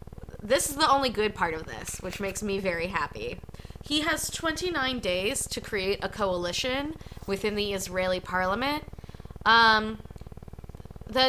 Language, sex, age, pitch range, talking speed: English, female, 20-39, 185-235 Hz, 145 wpm